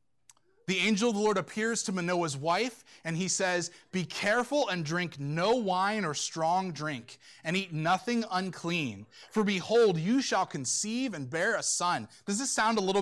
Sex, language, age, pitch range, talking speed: male, English, 20-39, 155-220 Hz, 180 wpm